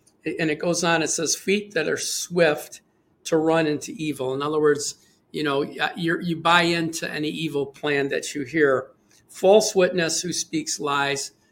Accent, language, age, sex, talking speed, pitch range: American, English, 50-69, male, 175 wpm, 145-170 Hz